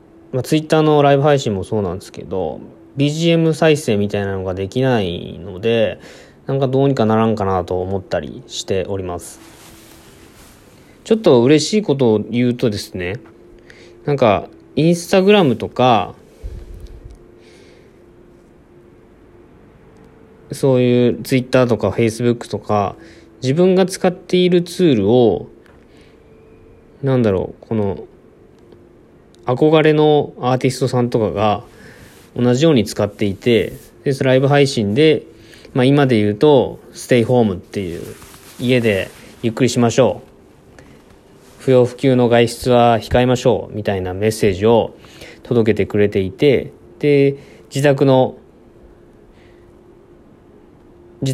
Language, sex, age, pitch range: Japanese, male, 20-39, 105-135 Hz